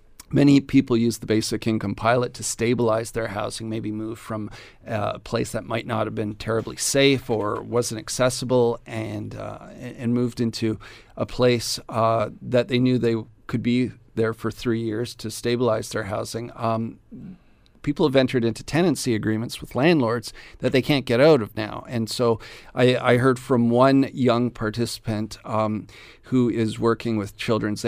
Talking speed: 170 wpm